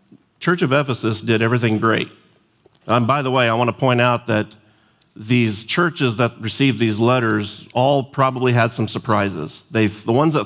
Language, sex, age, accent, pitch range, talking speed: English, male, 40-59, American, 110-125 Hz, 185 wpm